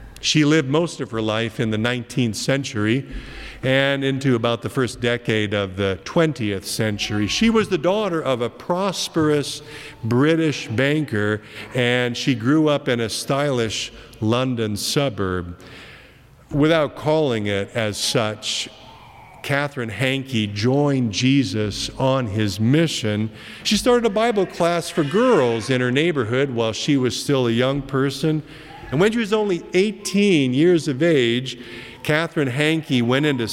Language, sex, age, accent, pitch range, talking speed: English, male, 50-69, American, 110-150 Hz, 145 wpm